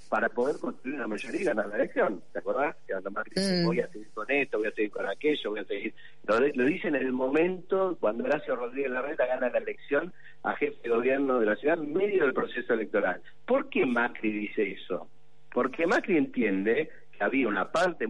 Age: 50-69